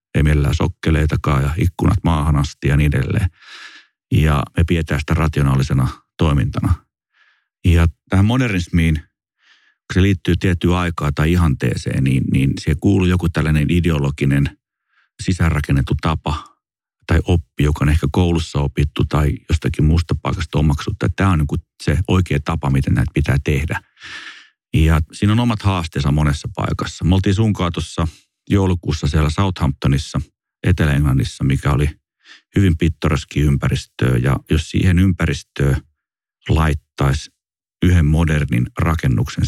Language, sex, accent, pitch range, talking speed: Finnish, male, native, 75-90 Hz, 125 wpm